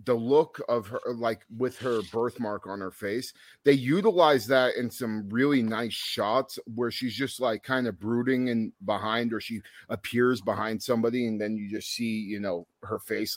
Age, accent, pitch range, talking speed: 30-49, American, 110-130 Hz, 190 wpm